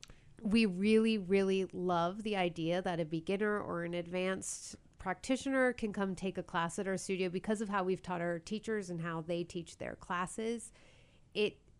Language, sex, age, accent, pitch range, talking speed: English, female, 30-49, American, 170-195 Hz, 180 wpm